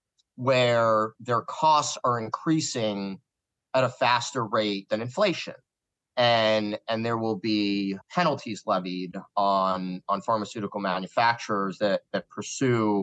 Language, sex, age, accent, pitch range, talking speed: English, male, 30-49, American, 105-125 Hz, 115 wpm